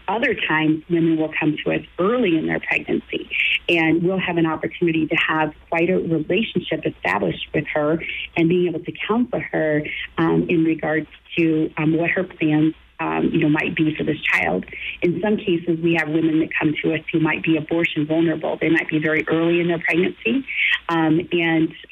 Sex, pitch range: female, 155-170 Hz